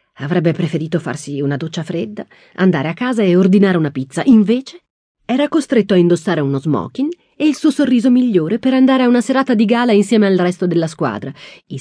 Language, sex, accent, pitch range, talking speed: Italian, female, native, 160-220 Hz, 195 wpm